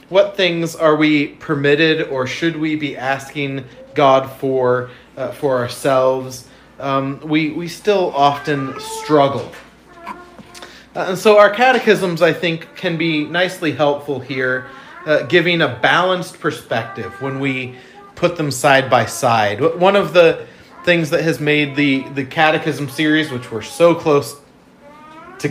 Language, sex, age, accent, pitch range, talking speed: English, male, 30-49, American, 125-170 Hz, 145 wpm